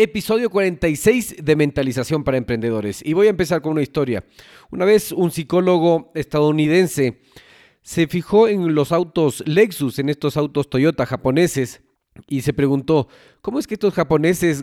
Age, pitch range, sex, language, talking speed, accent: 40-59, 135-175 Hz, male, Spanish, 150 wpm, Mexican